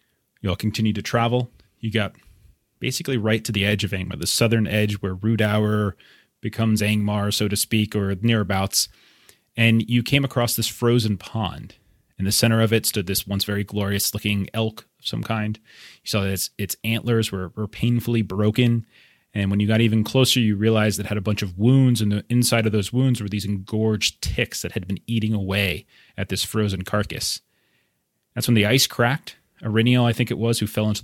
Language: English